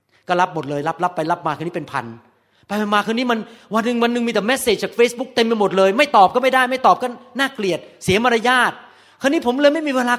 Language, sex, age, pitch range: Thai, male, 30-49, 130-190 Hz